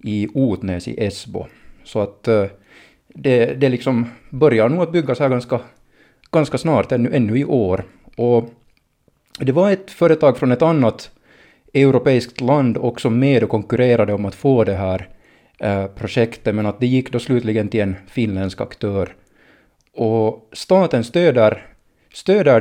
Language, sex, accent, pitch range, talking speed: Swedish, male, Finnish, 110-130 Hz, 150 wpm